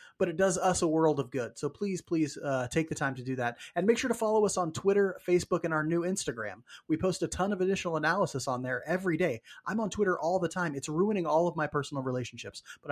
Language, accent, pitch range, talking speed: English, American, 140-180 Hz, 260 wpm